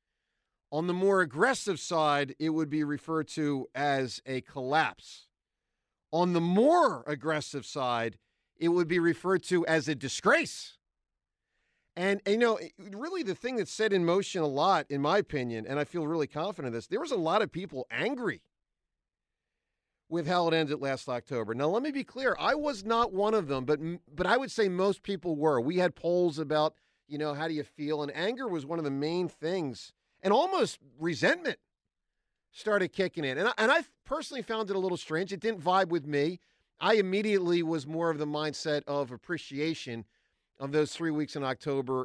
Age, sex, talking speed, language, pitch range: 50-69, male, 190 wpm, English, 145-185 Hz